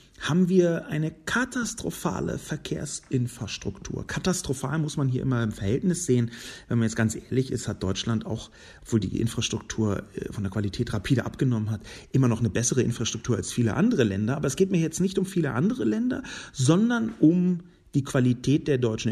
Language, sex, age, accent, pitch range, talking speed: German, male, 40-59, German, 110-160 Hz, 175 wpm